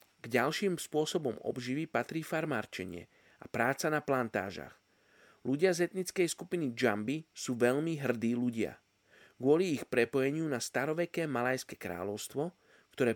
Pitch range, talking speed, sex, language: 120-155 Hz, 125 wpm, male, Slovak